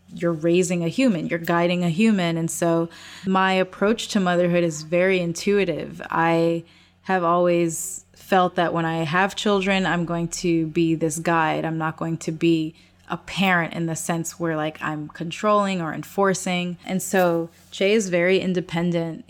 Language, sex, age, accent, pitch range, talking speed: English, female, 20-39, American, 165-190 Hz, 170 wpm